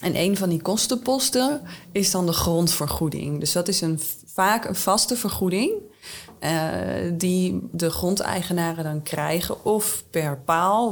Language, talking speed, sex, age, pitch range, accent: Dutch, 145 wpm, female, 20-39, 150-175 Hz, Dutch